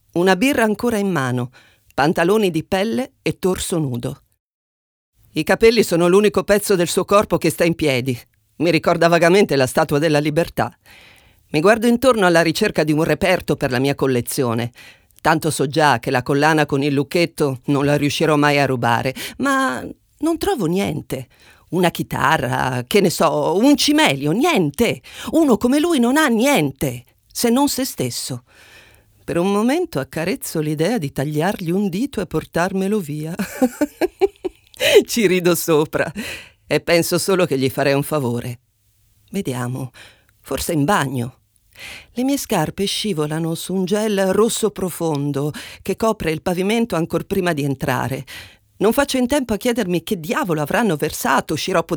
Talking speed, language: 155 wpm, Italian